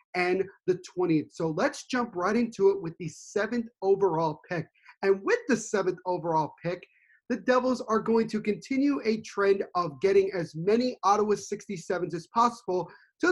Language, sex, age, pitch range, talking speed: English, male, 30-49, 180-220 Hz, 165 wpm